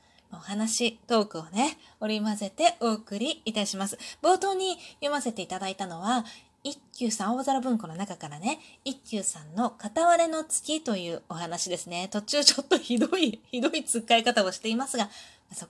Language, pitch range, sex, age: Japanese, 195-280 Hz, female, 20-39